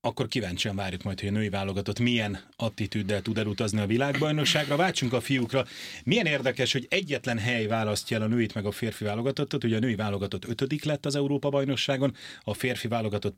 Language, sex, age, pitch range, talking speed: Hungarian, male, 30-49, 105-135 Hz, 190 wpm